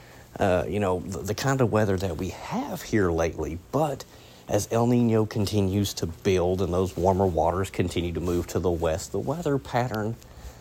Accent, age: American, 30-49